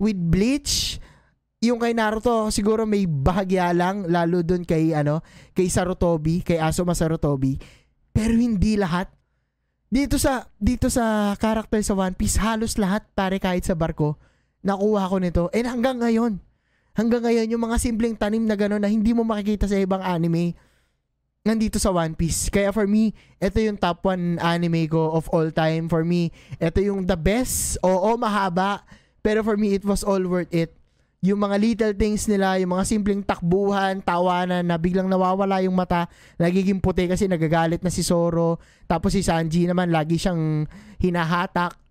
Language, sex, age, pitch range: Filipino, male, 20-39, 165-205 Hz